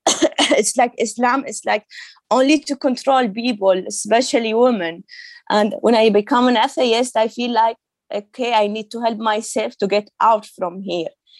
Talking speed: 165 wpm